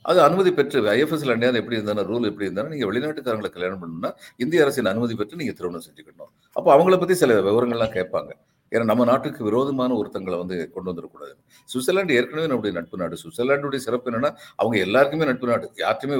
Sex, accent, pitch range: male, native, 115-160 Hz